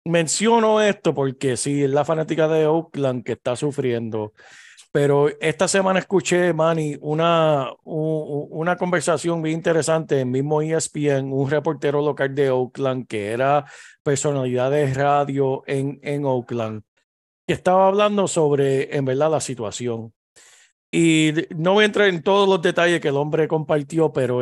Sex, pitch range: male, 135-165 Hz